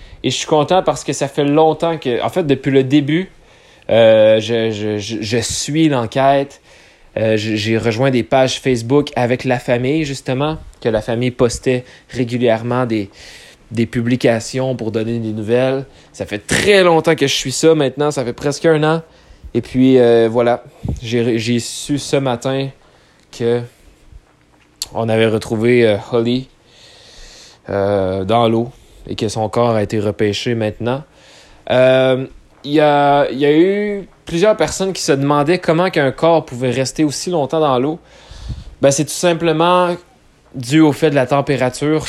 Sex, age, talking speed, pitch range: male, 20-39, 165 wpm, 115-150 Hz